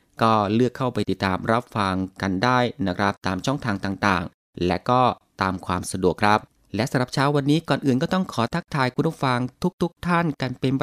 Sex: male